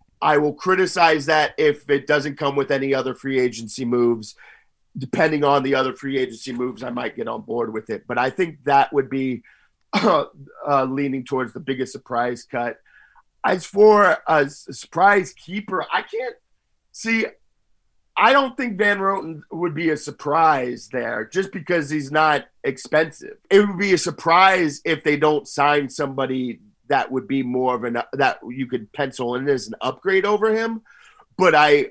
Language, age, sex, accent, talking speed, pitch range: English, 40-59, male, American, 175 wpm, 125-170 Hz